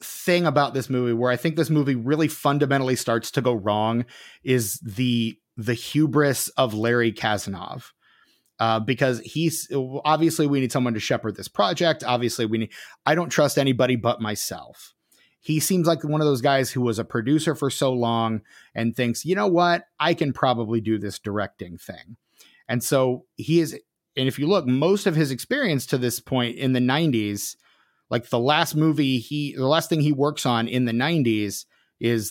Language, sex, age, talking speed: English, male, 30-49, 190 wpm